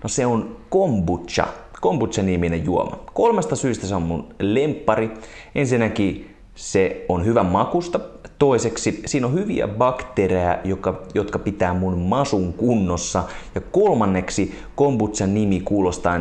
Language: Finnish